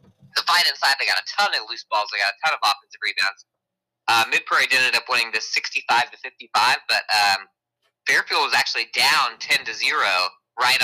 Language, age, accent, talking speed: English, 20-39, American, 195 wpm